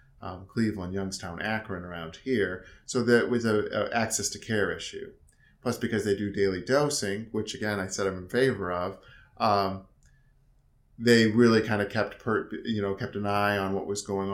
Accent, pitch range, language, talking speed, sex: American, 100-120 Hz, English, 190 wpm, male